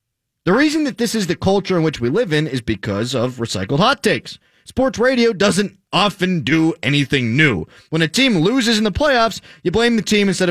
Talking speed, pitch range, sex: 210 wpm, 140-220 Hz, male